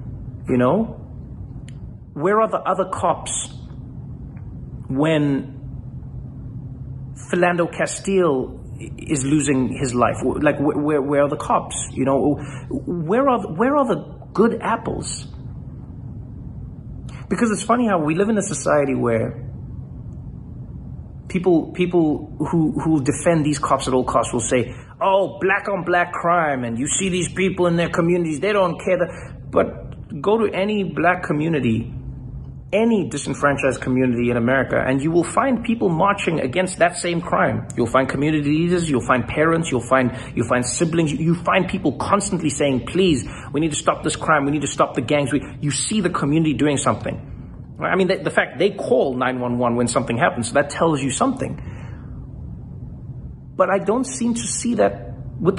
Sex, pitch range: male, 130-180 Hz